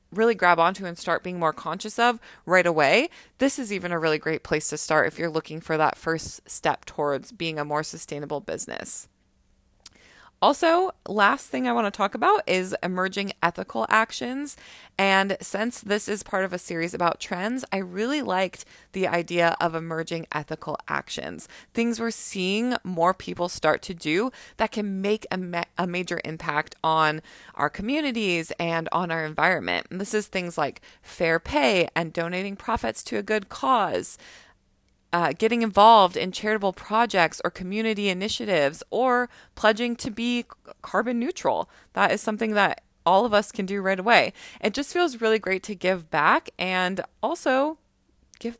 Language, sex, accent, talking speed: English, female, American, 170 wpm